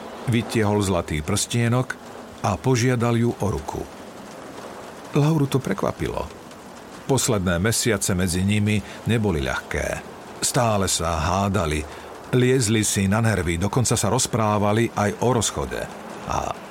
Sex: male